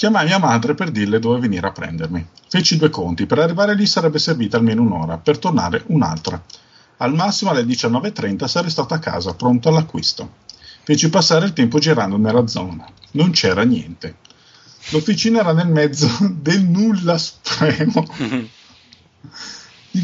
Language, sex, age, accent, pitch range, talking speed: Italian, male, 50-69, native, 120-180 Hz, 150 wpm